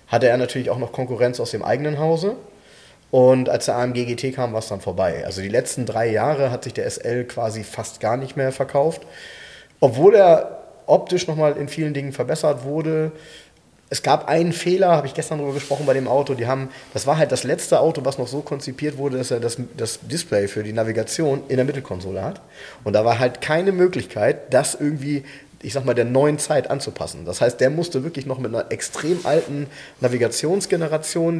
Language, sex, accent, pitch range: German, male, German, 120-150 Hz